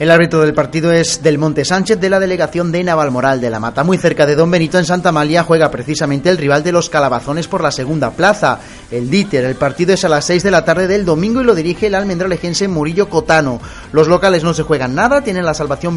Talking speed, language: 240 wpm, Spanish